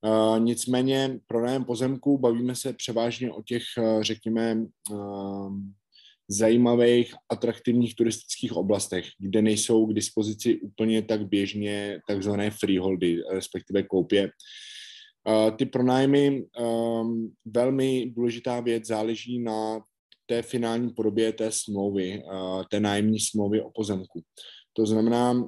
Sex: male